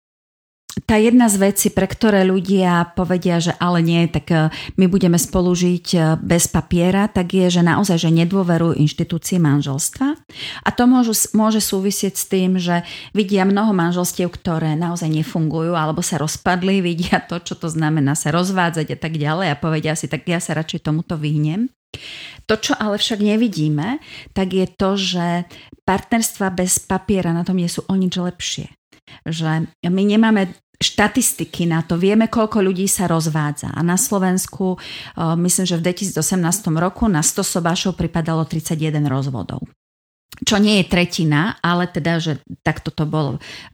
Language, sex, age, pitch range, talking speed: Slovak, female, 40-59, 160-195 Hz, 160 wpm